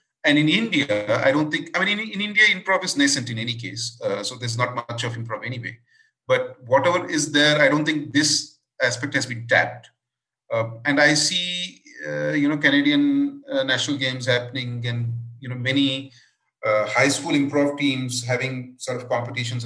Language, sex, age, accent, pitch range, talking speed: English, male, 30-49, Indian, 120-150 Hz, 190 wpm